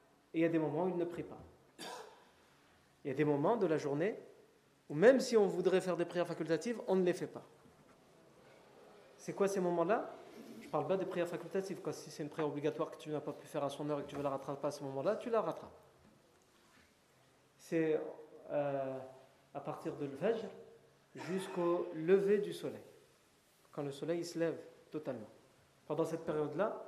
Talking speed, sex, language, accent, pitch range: 200 wpm, male, French, French, 150-190 Hz